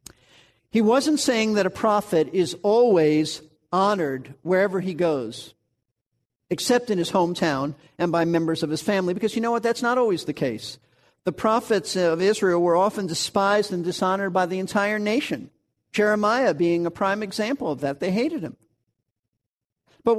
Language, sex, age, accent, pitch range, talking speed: English, male, 50-69, American, 160-220 Hz, 165 wpm